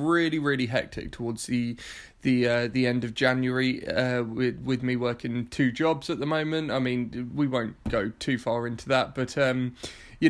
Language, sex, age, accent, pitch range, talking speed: English, male, 20-39, British, 130-155 Hz, 190 wpm